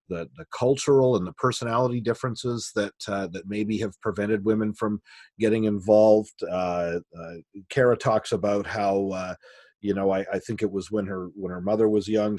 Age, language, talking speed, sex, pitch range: 40-59, English, 185 wpm, male, 100-115 Hz